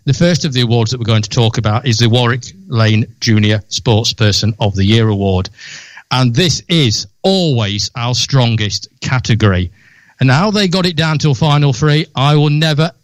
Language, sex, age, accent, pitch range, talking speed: English, male, 50-69, British, 120-170 Hz, 190 wpm